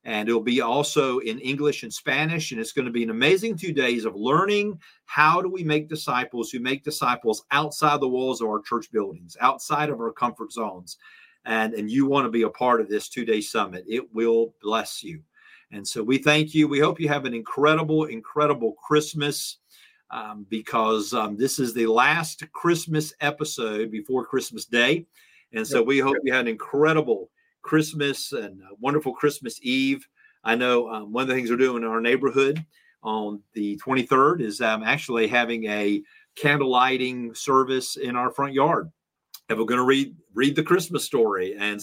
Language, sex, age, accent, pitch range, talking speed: English, male, 40-59, American, 115-155 Hz, 190 wpm